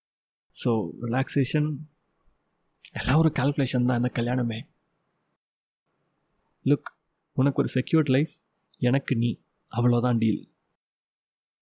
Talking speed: 90 wpm